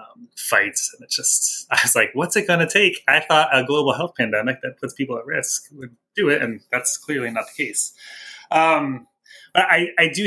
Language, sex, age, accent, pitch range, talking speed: English, male, 20-39, Canadian, 105-150 Hz, 210 wpm